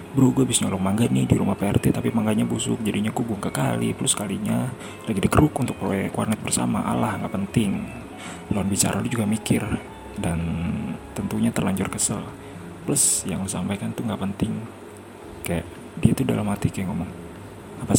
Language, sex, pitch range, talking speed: Indonesian, male, 90-110 Hz, 165 wpm